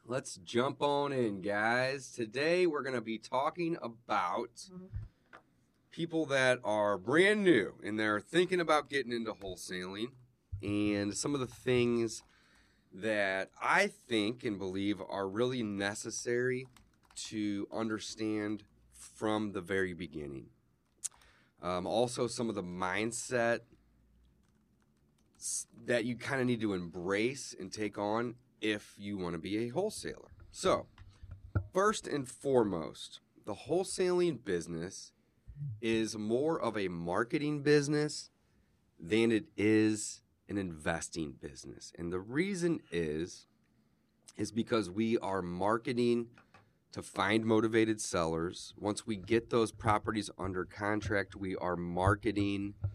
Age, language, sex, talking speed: 30-49, English, male, 120 wpm